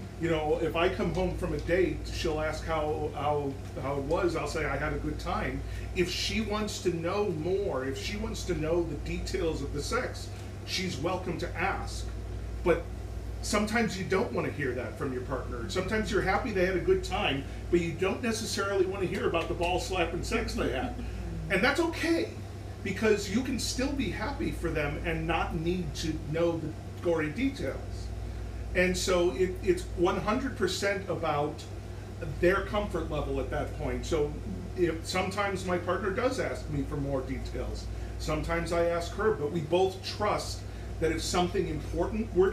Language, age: English, 40-59